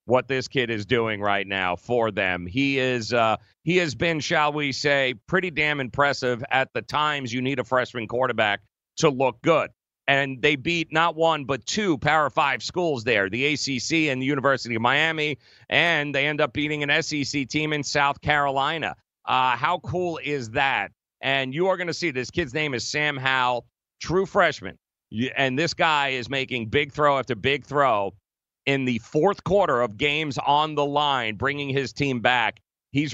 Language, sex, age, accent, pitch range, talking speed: English, male, 40-59, American, 120-150 Hz, 185 wpm